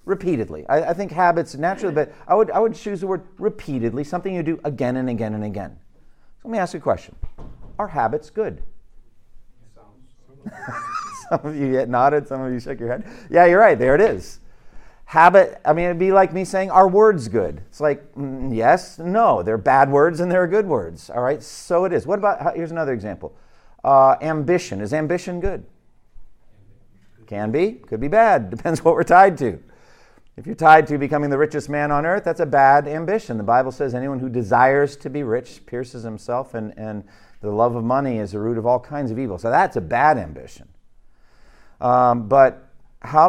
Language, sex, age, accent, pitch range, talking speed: English, male, 50-69, American, 120-165 Hz, 200 wpm